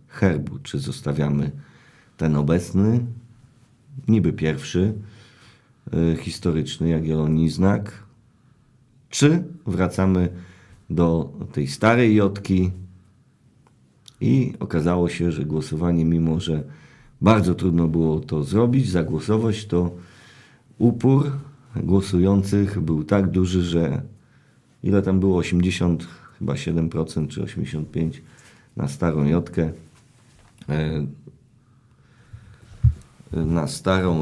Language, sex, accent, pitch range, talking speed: Polish, male, native, 80-110 Hz, 85 wpm